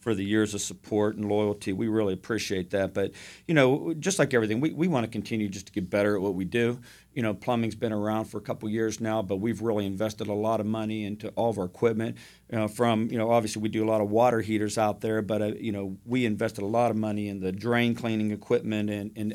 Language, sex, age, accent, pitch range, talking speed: English, male, 50-69, American, 105-120 Hz, 265 wpm